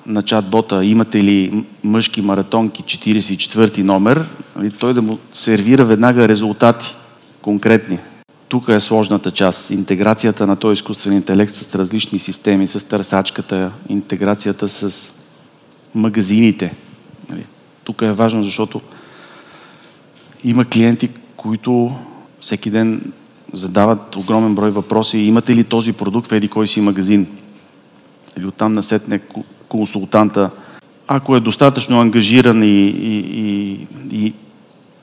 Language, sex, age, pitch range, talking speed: Bulgarian, male, 40-59, 100-115 Hz, 115 wpm